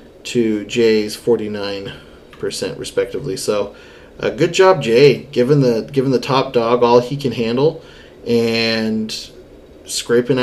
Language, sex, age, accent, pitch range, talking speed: English, male, 30-49, American, 110-145 Hz, 125 wpm